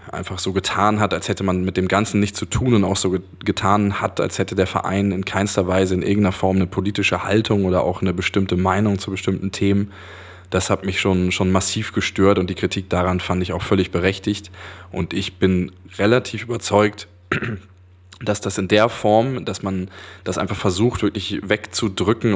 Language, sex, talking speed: German, male, 195 wpm